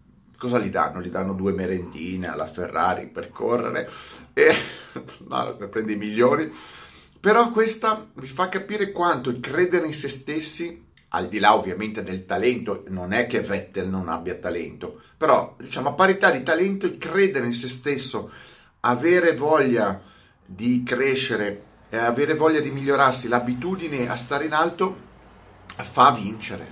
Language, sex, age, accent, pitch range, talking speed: Italian, male, 30-49, native, 105-140 Hz, 150 wpm